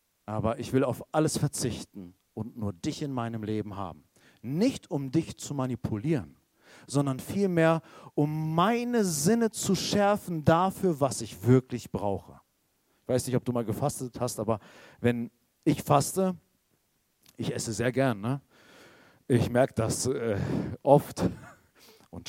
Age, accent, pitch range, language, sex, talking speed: 50-69, German, 125-195 Hz, German, male, 140 wpm